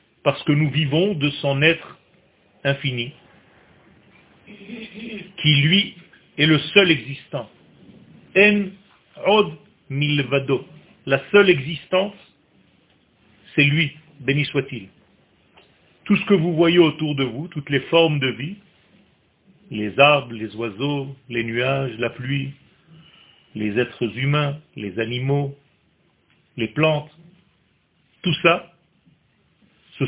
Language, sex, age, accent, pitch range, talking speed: French, male, 40-59, French, 130-170 Hz, 110 wpm